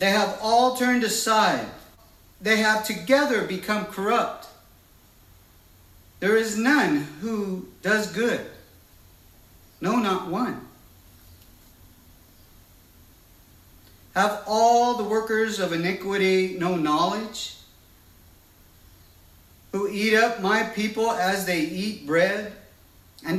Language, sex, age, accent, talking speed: English, male, 50-69, American, 95 wpm